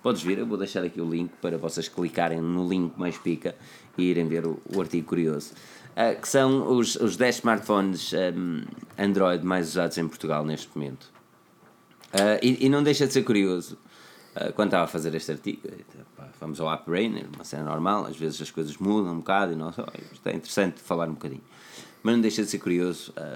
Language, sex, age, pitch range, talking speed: Portuguese, male, 20-39, 80-100 Hz, 205 wpm